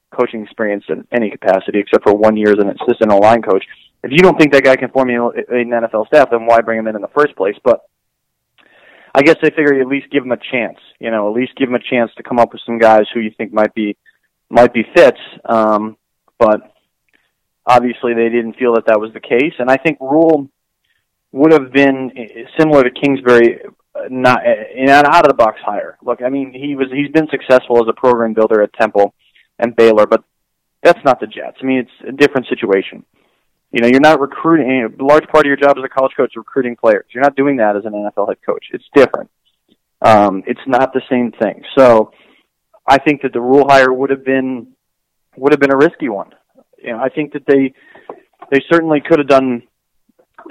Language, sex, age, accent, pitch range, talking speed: English, male, 20-39, American, 115-135 Hz, 220 wpm